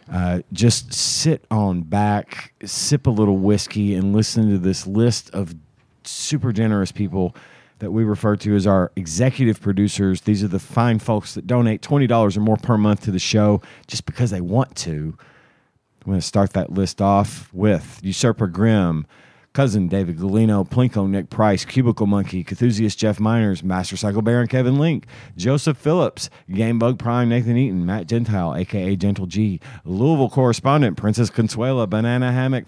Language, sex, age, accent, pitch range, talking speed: English, male, 40-59, American, 95-120 Hz, 165 wpm